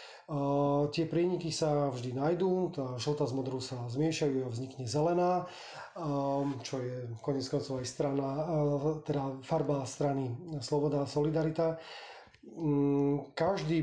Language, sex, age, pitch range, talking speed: Slovak, male, 30-49, 135-150 Hz, 125 wpm